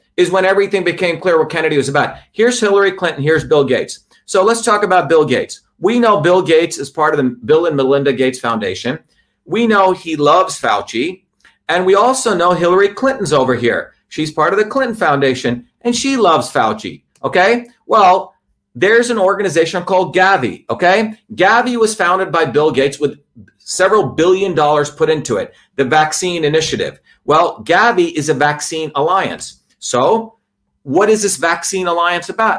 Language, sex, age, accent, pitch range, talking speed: English, male, 40-59, American, 140-190 Hz, 175 wpm